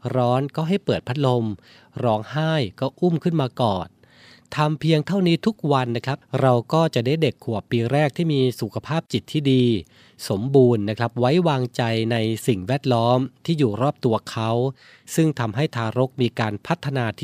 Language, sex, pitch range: Thai, male, 115-150 Hz